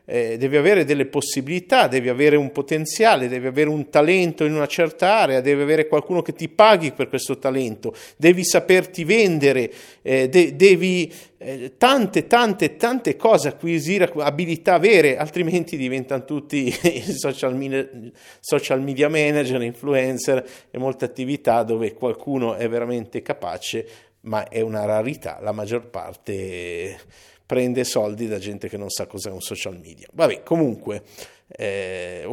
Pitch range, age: 125-180 Hz, 50-69